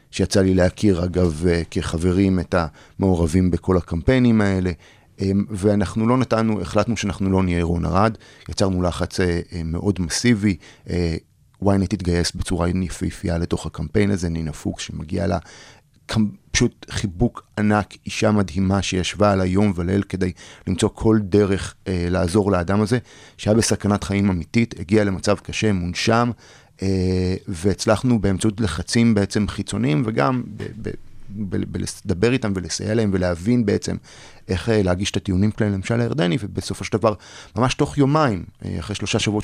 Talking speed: 140 wpm